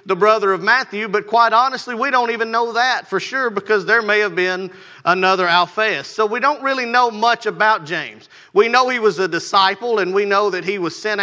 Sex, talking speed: male, 225 wpm